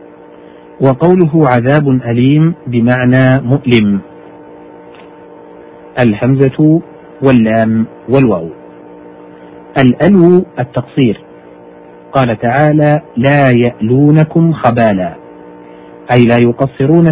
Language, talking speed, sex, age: Arabic, 65 wpm, male, 50-69